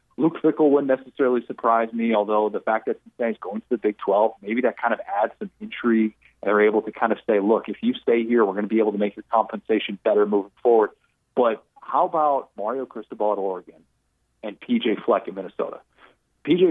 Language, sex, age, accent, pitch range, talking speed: English, male, 30-49, American, 105-145 Hz, 210 wpm